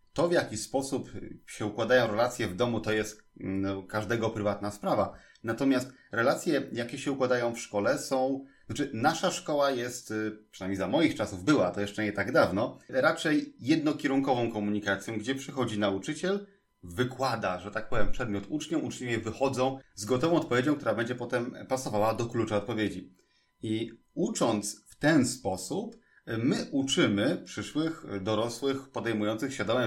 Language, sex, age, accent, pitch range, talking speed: Polish, male, 30-49, native, 105-135 Hz, 145 wpm